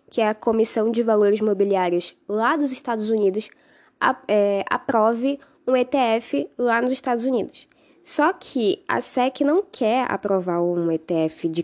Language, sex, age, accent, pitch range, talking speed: Portuguese, female, 10-29, Brazilian, 205-260 Hz, 145 wpm